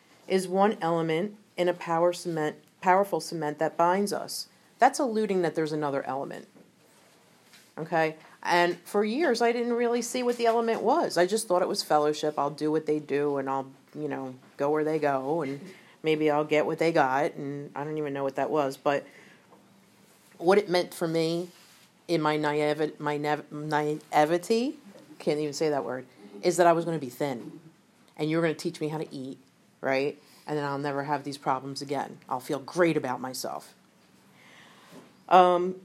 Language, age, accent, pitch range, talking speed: English, 40-59, American, 150-185 Hz, 190 wpm